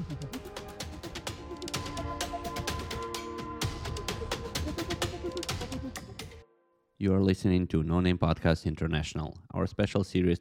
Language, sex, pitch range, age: Ukrainian, male, 80-95 Hz, 30-49